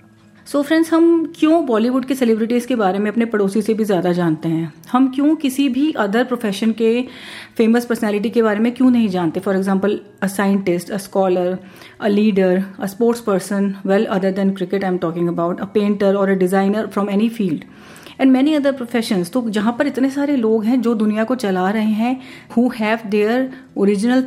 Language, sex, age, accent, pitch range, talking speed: Hindi, female, 30-49, native, 195-245 Hz, 200 wpm